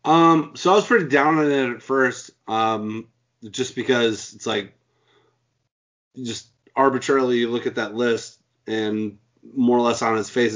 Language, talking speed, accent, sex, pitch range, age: English, 165 wpm, American, male, 110-130 Hz, 30-49